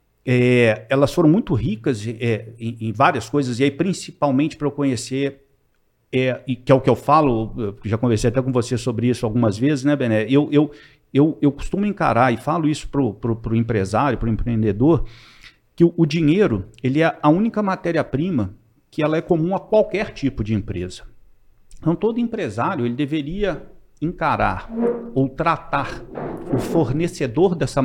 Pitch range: 115-160 Hz